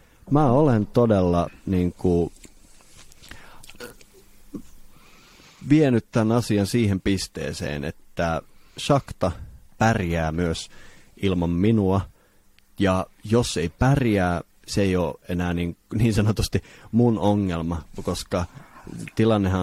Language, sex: Finnish, male